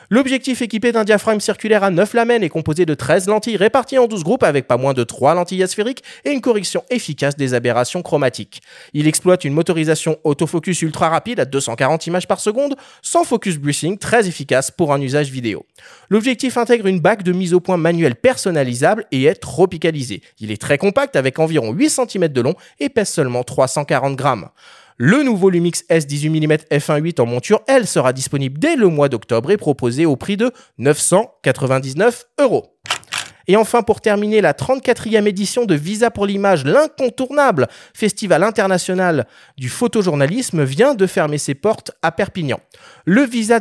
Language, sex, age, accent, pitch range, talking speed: French, male, 30-49, French, 145-215 Hz, 170 wpm